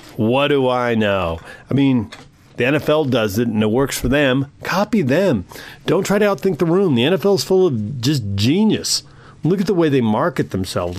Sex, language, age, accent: male, English, 40-59, American